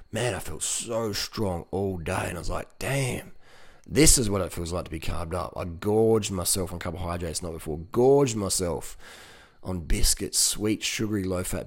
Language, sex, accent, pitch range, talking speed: English, male, Australian, 90-110 Hz, 185 wpm